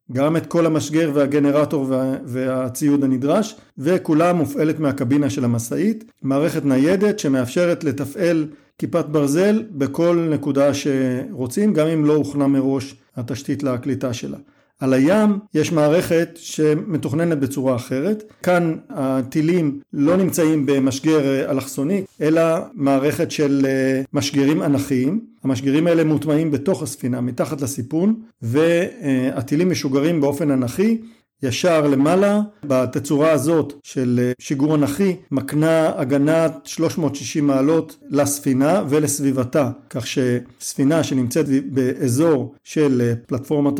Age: 50-69